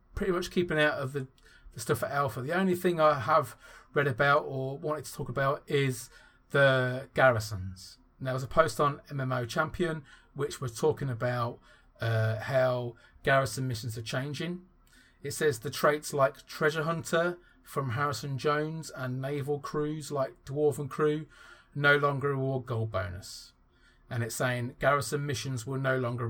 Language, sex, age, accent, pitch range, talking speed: English, male, 30-49, British, 130-170 Hz, 160 wpm